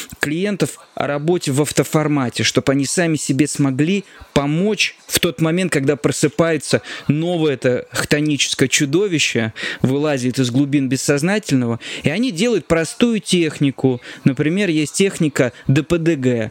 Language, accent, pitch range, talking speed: Russian, native, 135-175 Hz, 120 wpm